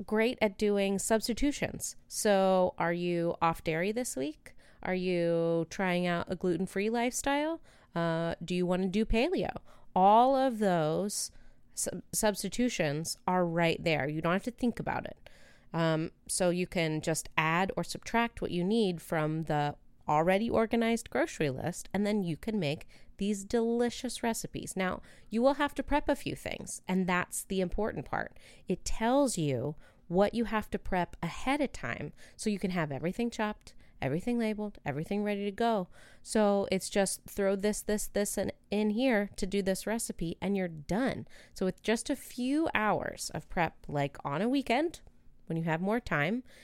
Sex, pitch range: female, 170-220 Hz